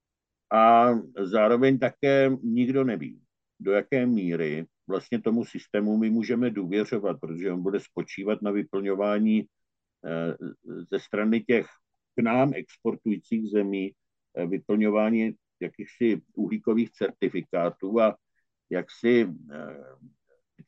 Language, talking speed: Czech, 100 wpm